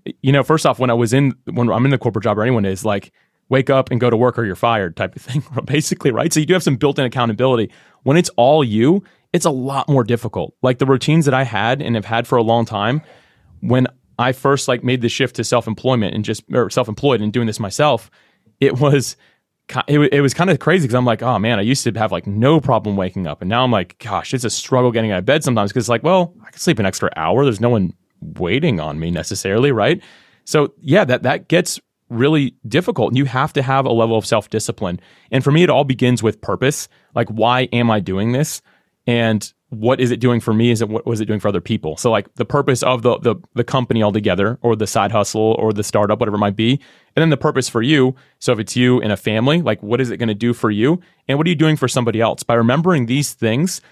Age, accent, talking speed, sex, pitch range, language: 30-49, American, 260 wpm, male, 110-135 Hz, English